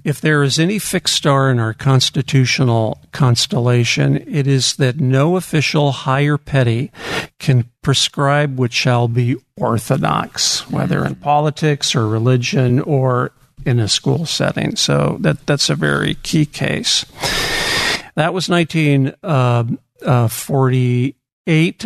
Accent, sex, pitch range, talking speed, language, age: American, male, 125-155 Hz, 120 wpm, English, 50-69